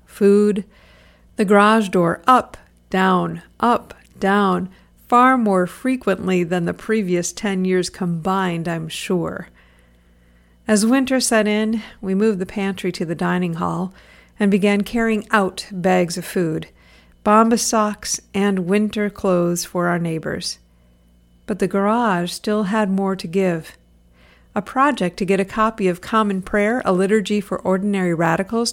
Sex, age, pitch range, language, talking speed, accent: female, 50-69, 170-210 Hz, English, 140 wpm, American